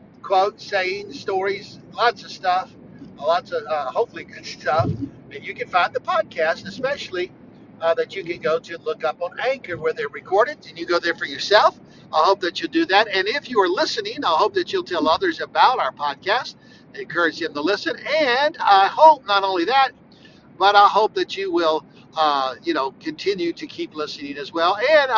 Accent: American